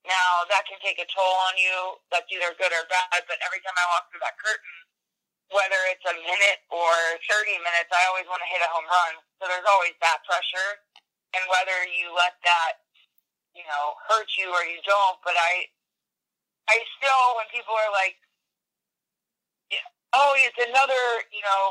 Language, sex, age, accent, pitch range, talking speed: English, female, 30-49, American, 180-210 Hz, 180 wpm